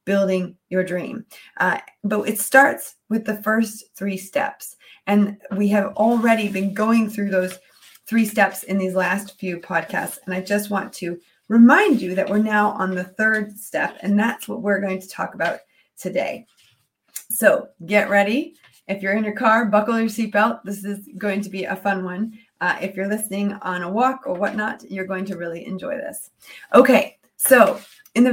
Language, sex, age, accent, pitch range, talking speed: English, female, 30-49, American, 185-220 Hz, 185 wpm